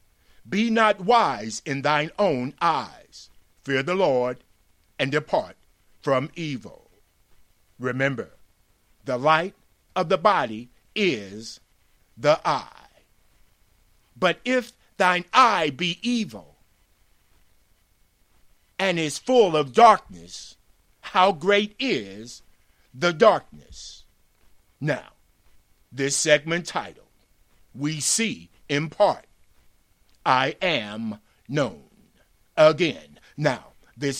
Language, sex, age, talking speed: English, male, 50-69, 95 wpm